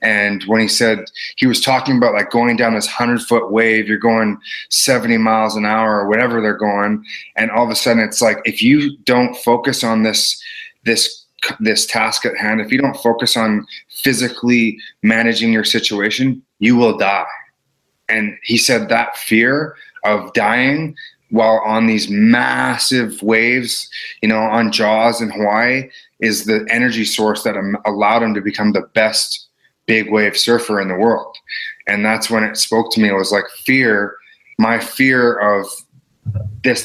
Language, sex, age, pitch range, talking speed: English, male, 30-49, 105-120 Hz, 170 wpm